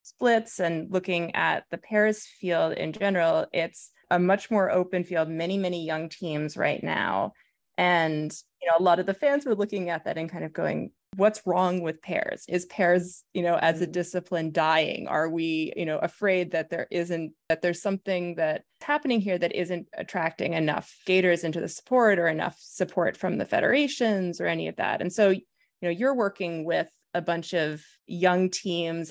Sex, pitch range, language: female, 165-210 Hz, English